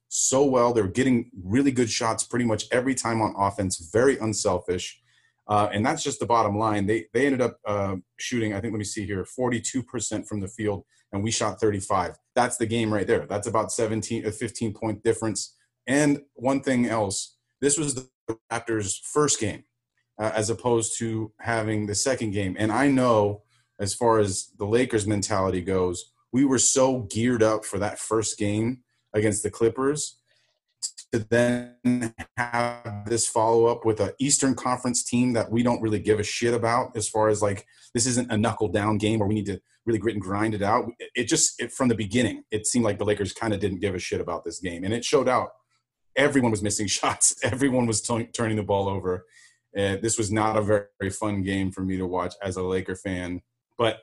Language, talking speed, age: English, 200 wpm, 30-49